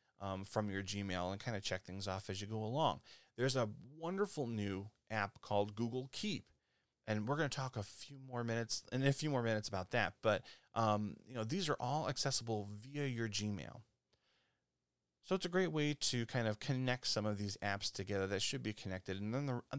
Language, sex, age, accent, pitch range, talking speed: English, male, 30-49, American, 105-135 Hz, 210 wpm